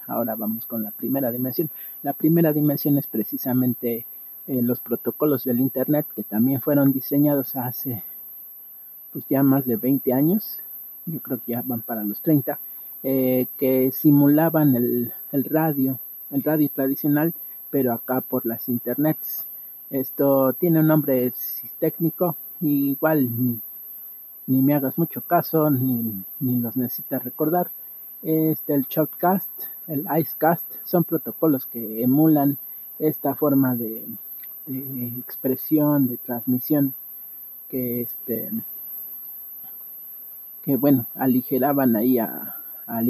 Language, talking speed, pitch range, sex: Spanish, 130 wpm, 120-145 Hz, male